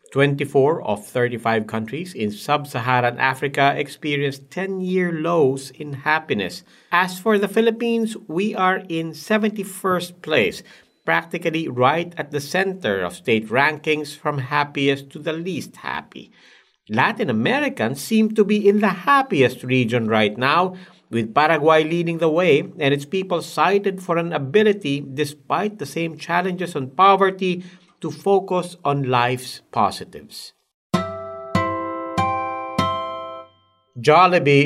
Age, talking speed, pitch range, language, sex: 50-69, 125 wpm, 130-185 Hz, English, male